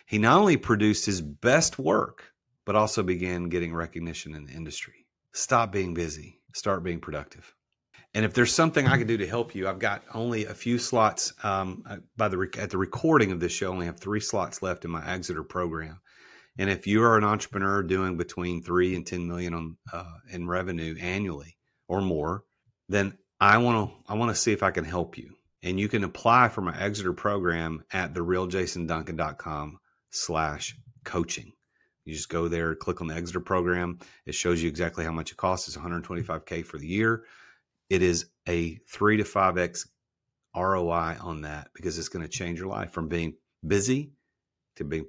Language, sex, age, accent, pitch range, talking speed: English, male, 40-59, American, 85-105 Hz, 190 wpm